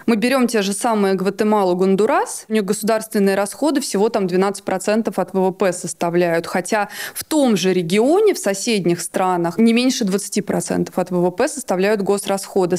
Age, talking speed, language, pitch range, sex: 20-39, 150 wpm, Russian, 190-235 Hz, female